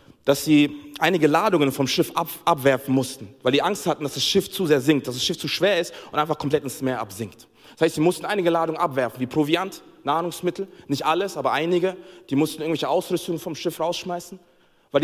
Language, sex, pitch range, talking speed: German, male, 125-170 Hz, 210 wpm